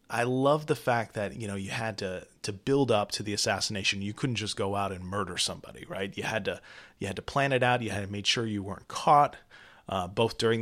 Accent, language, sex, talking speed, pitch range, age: American, English, male, 245 wpm, 100-120 Hz, 30-49